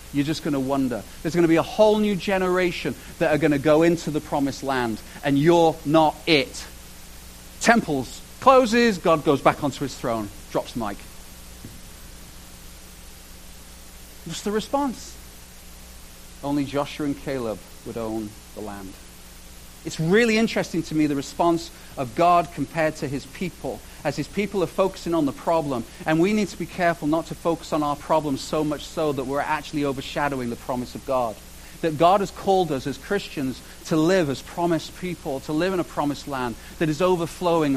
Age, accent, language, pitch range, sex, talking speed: 40-59, British, English, 130-180 Hz, male, 180 wpm